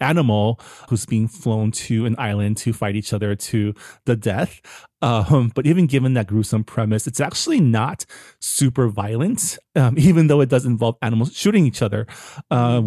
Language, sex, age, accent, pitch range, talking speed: English, male, 30-49, American, 110-140 Hz, 175 wpm